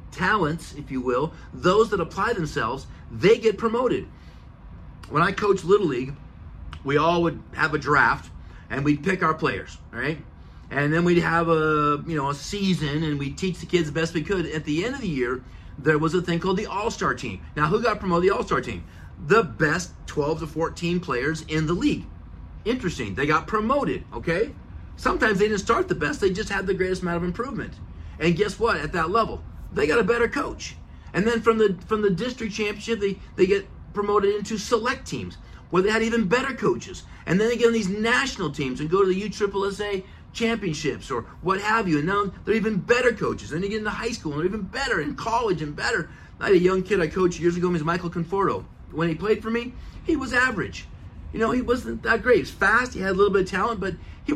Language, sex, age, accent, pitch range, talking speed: English, male, 40-59, American, 150-215 Hz, 225 wpm